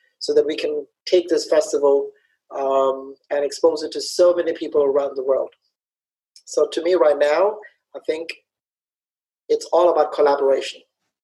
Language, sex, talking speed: English, male, 155 wpm